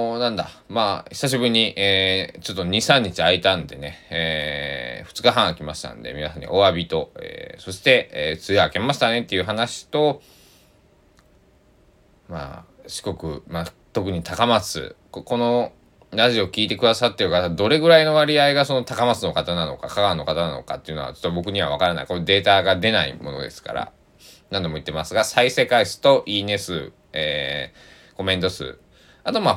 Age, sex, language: 20-39, male, Japanese